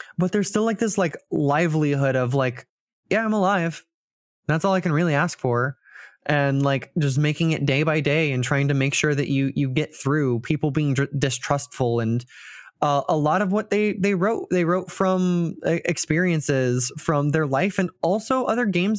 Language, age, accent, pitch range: English, 20-39, American, 145-180 Hz